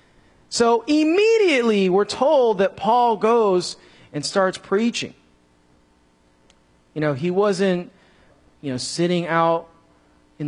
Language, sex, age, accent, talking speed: English, male, 40-59, American, 110 wpm